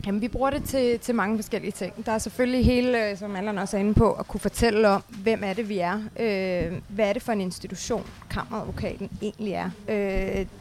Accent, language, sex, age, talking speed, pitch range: native, Danish, female, 20-39, 215 wpm, 200-230 Hz